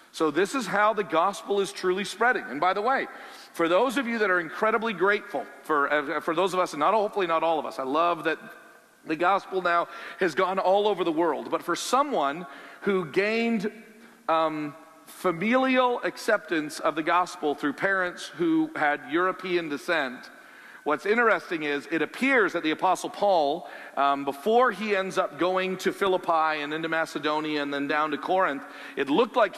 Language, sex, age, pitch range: English, male, 40-59, 165-250 Hz